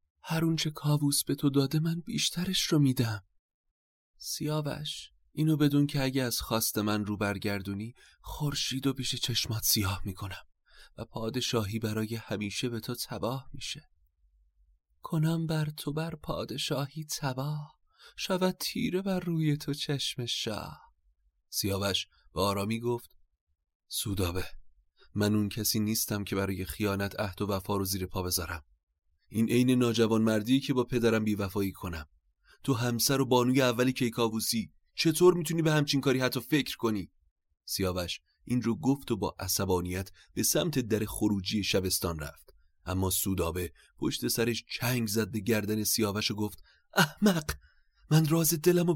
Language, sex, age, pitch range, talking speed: Persian, male, 30-49, 100-145 Hz, 145 wpm